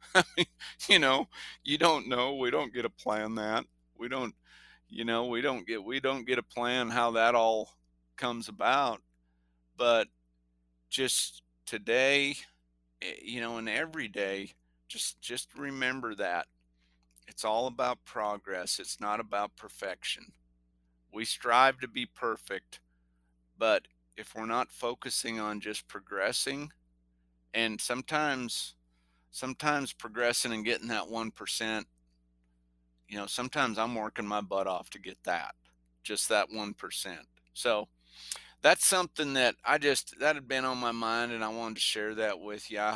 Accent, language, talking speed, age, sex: American, English, 150 wpm, 50-69, male